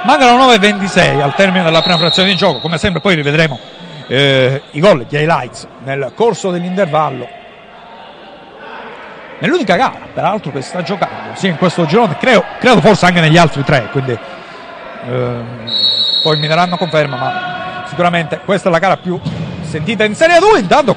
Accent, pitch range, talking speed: native, 145-200 Hz, 160 wpm